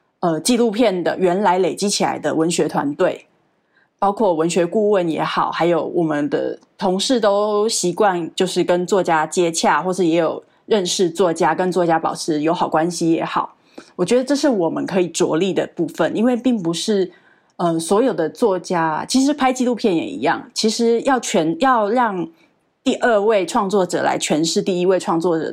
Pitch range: 165-220 Hz